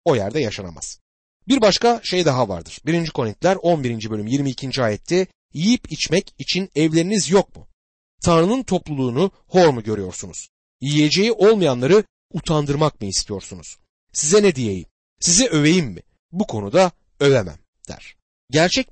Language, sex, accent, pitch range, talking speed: Turkish, male, native, 105-175 Hz, 130 wpm